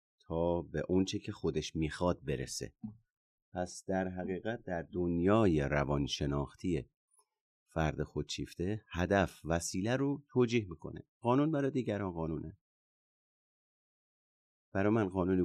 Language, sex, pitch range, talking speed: Persian, male, 80-115 Hz, 105 wpm